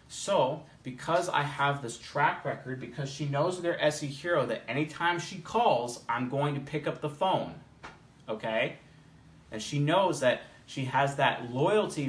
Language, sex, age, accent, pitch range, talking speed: English, male, 30-49, American, 130-160 Hz, 165 wpm